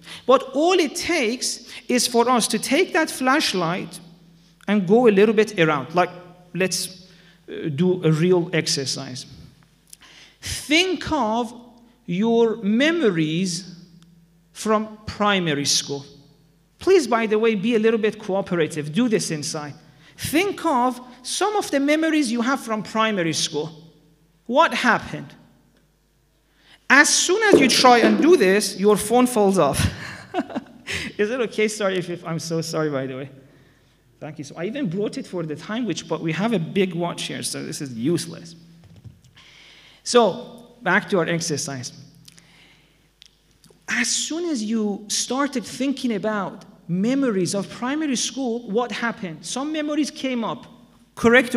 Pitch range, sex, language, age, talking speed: 165-240 Hz, male, English, 50-69, 145 wpm